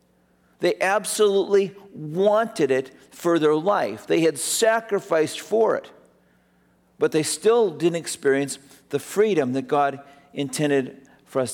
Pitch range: 135-200 Hz